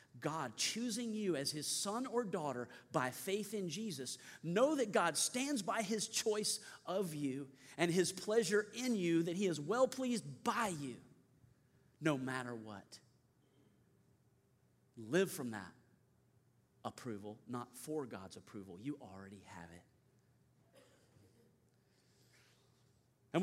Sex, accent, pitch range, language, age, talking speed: male, American, 125-180 Hz, English, 40-59, 125 wpm